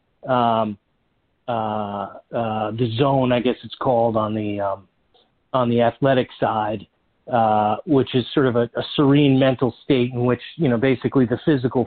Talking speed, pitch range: 165 wpm, 115-135 Hz